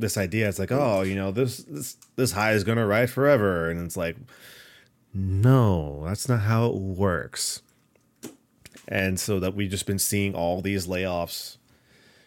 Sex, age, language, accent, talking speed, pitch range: male, 30-49, English, American, 170 wpm, 85-110 Hz